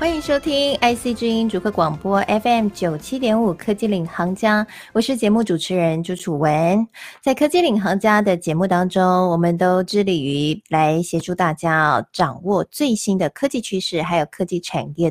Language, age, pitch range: Chinese, 20-39, 165-225 Hz